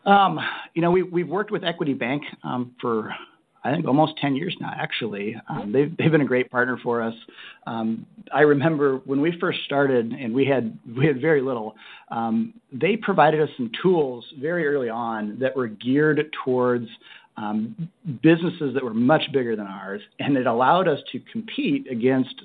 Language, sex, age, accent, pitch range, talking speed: English, male, 50-69, American, 120-155 Hz, 185 wpm